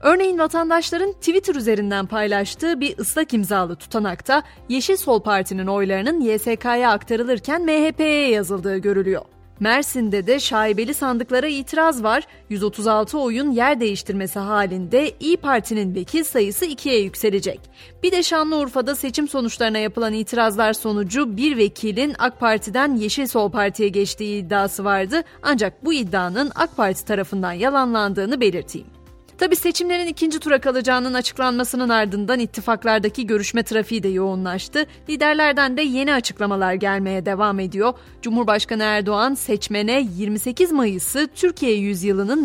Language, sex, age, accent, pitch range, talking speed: Turkish, female, 30-49, native, 205-285 Hz, 125 wpm